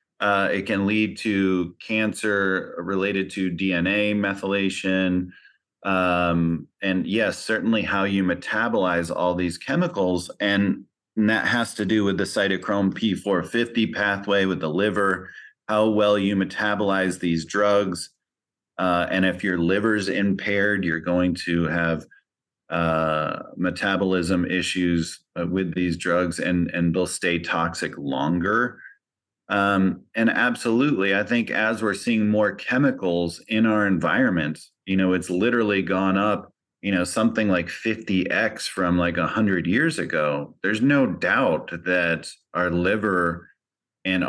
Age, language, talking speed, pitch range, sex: 30-49, English, 135 wpm, 85-100 Hz, male